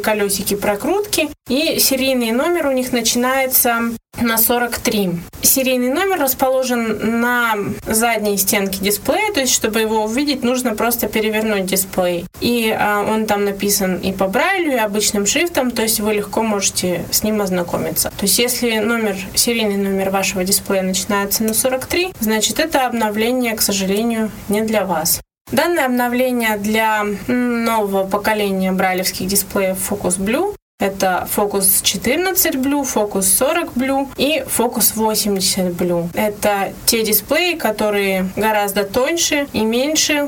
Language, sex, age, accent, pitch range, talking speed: Russian, female, 20-39, native, 205-260 Hz, 135 wpm